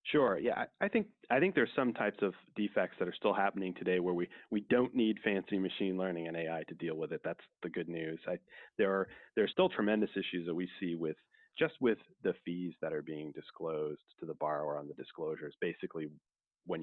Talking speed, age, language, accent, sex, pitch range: 220 wpm, 30-49, English, American, male, 90-110 Hz